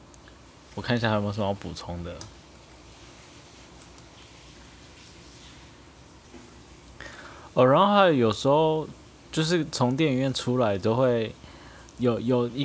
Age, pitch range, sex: 20-39, 100-130 Hz, male